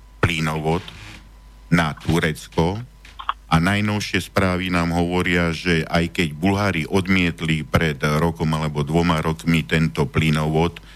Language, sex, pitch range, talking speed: Slovak, male, 80-95 Hz, 110 wpm